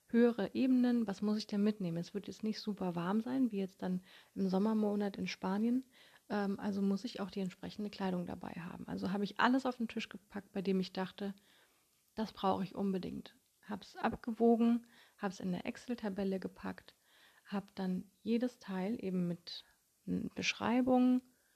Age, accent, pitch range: 30-49, German, 190-225 Hz